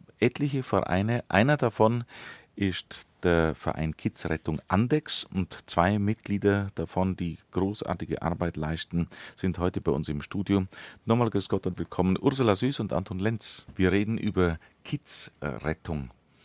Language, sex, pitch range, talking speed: German, male, 80-105 Hz, 135 wpm